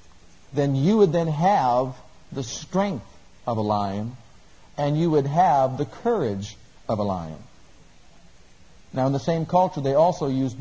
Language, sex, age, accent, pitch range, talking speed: English, male, 50-69, American, 120-165 Hz, 155 wpm